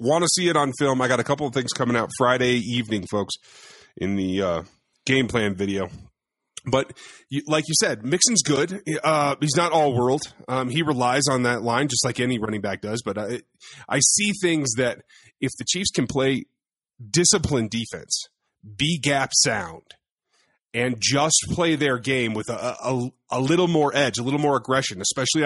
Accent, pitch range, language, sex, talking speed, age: American, 115-150 Hz, English, male, 185 wpm, 30-49